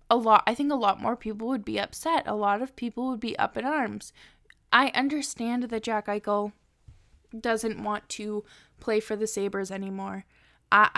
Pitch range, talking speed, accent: 205-235 Hz, 185 wpm, American